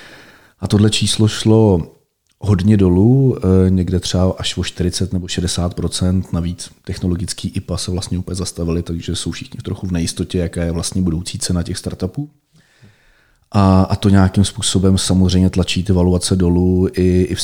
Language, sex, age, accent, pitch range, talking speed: Czech, male, 40-59, native, 90-100 Hz, 150 wpm